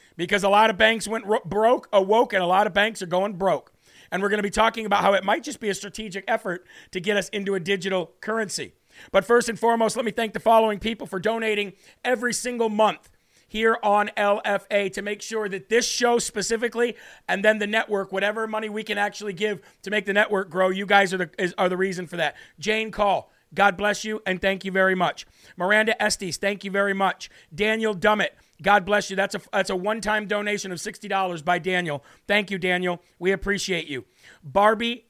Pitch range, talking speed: 195-215 Hz, 210 wpm